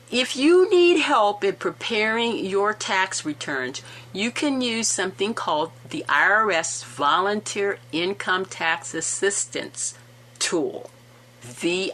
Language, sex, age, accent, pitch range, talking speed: English, female, 50-69, American, 165-240 Hz, 110 wpm